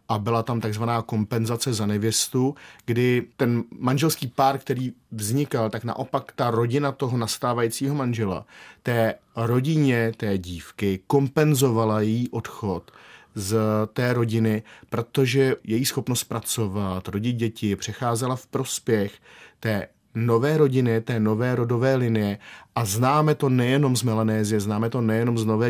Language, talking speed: Czech, 135 wpm